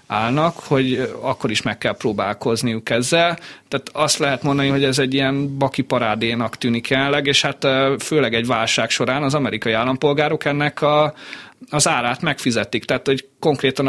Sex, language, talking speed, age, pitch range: male, Hungarian, 160 wpm, 30-49, 120-145 Hz